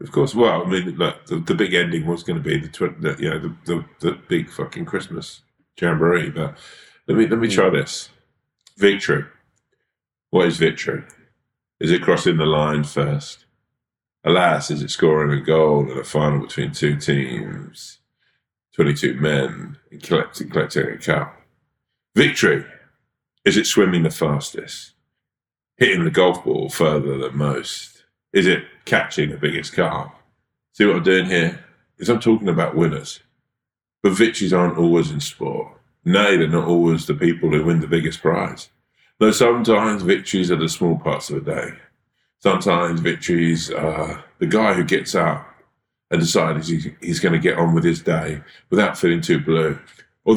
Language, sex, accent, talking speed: English, male, British, 170 wpm